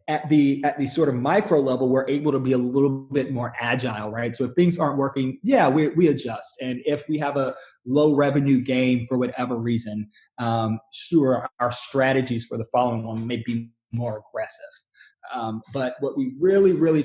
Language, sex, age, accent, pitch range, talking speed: English, male, 20-39, American, 130-160 Hz, 195 wpm